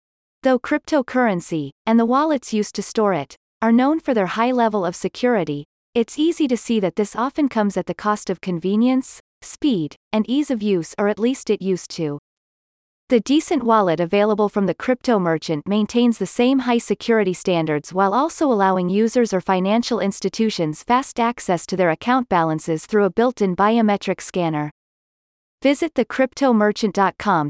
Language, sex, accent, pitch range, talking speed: English, female, American, 180-245 Hz, 165 wpm